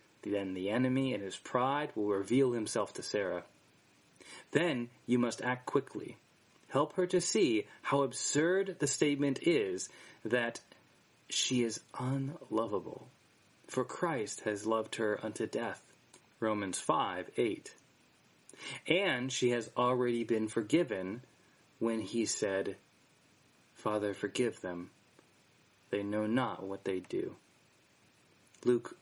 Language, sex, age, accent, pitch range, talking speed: English, male, 30-49, American, 105-140 Hz, 120 wpm